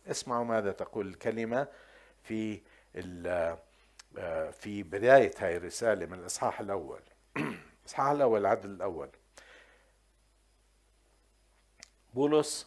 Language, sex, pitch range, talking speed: Arabic, male, 105-135 Hz, 80 wpm